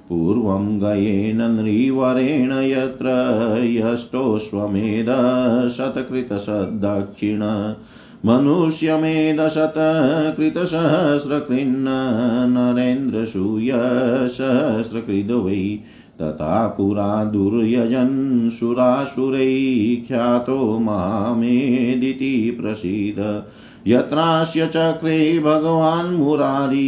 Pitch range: 110-135 Hz